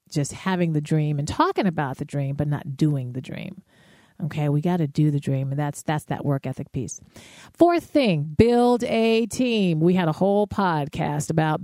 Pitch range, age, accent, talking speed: 155-195 Hz, 40-59, American, 200 wpm